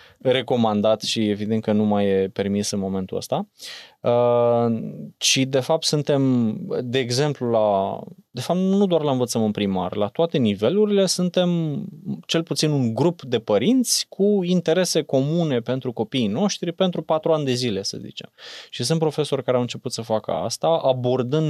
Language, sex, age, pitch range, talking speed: Romanian, male, 20-39, 110-140 Hz, 165 wpm